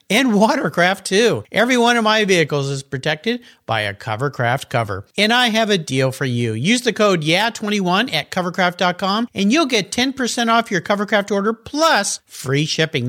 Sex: male